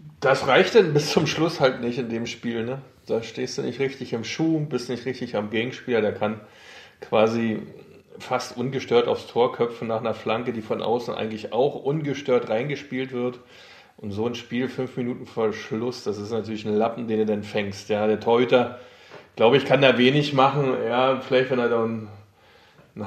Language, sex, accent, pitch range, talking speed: German, male, German, 115-150 Hz, 200 wpm